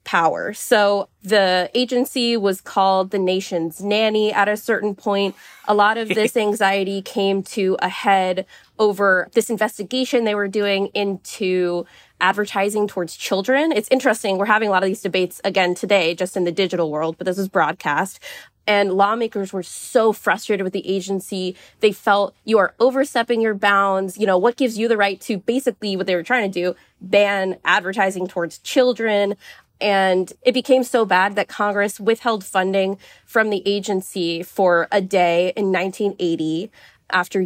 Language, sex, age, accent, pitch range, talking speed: English, female, 20-39, American, 185-215 Hz, 165 wpm